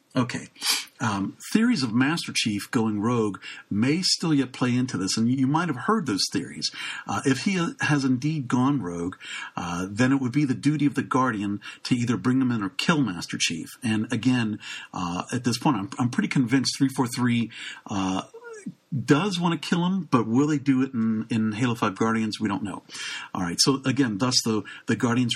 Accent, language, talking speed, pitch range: American, English, 200 wpm, 105-135 Hz